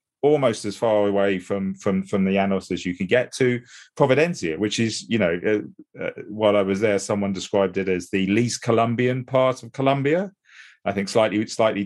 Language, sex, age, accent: English, male, 40-59, British